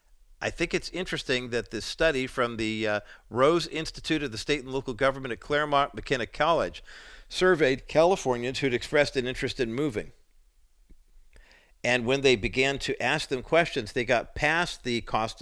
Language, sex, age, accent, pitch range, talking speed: English, male, 50-69, American, 110-145 Hz, 165 wpm